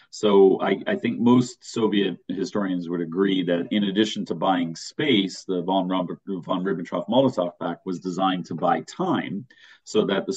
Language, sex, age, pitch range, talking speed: English, male, 40-59, 85-105 Hz, 175 wpm